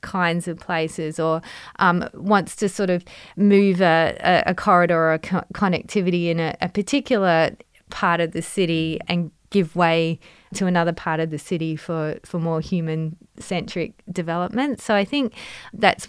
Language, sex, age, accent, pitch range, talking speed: English, female, 30-49, Australian, 170-195 Hz, 155 wpm